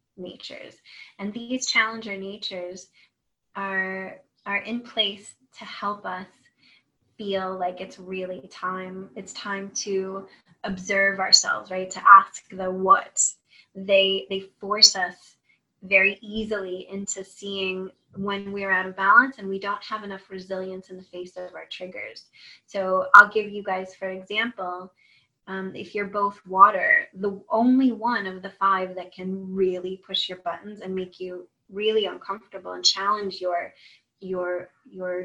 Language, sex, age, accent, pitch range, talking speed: English, female, 20-39, American, 185-215 Hz, 145 wpm